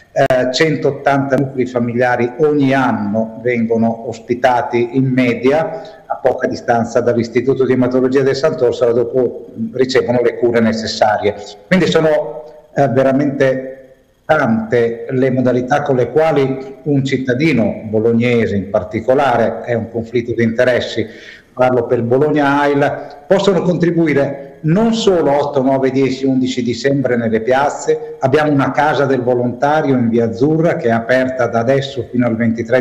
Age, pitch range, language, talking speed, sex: 50-69, 120-150 Hz, Italian, 135 wpm, male